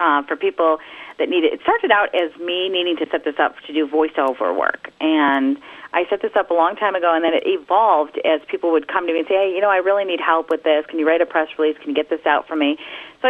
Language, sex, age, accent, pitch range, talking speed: English, female, 40-59, American, 150-190 Hz, 290 wpm